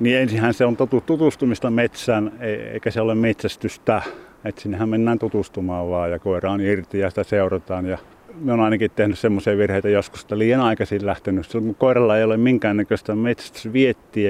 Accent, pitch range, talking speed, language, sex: native, 100-120 Hz, 170 wpm, Finnish, male